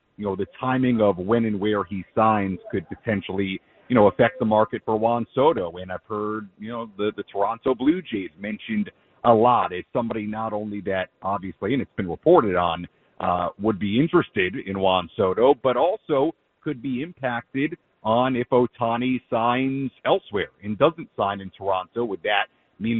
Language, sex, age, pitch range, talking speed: English, male, 40-59, 105-135 Hz, 180 wpm